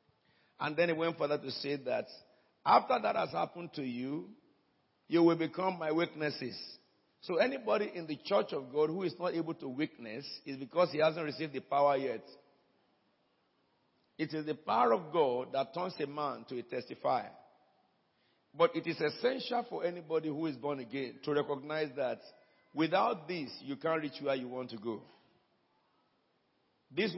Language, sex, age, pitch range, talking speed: English, male, 50-69, 135-165 Hz, 170 wpm